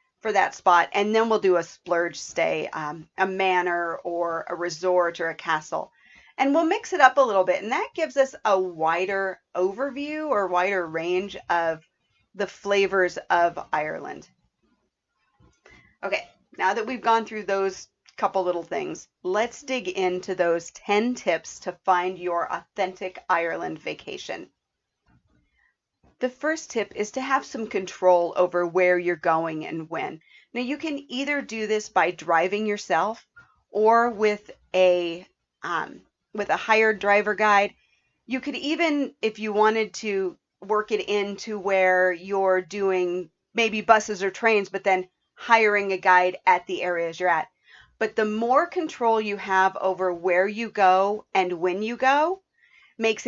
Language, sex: English, female